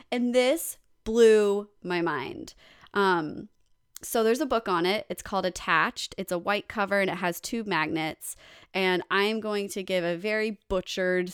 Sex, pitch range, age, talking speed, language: female, 170-205 Hz, 20-39, 170 wpm, English